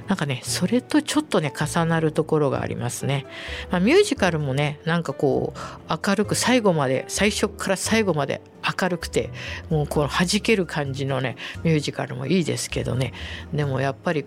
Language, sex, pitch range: Japanese, female, 125-165 Hz